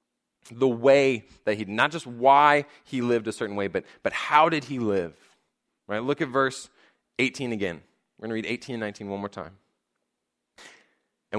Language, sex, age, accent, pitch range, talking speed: English, male, 20-39, American, 120-165 Hz, 190 wpm